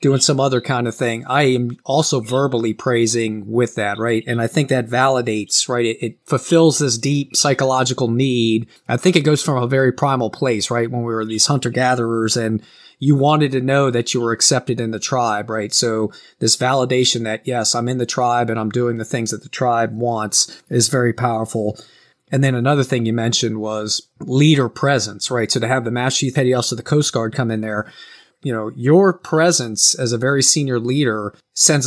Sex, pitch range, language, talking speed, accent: male, 115-135 Hz, English, 205 wpm, American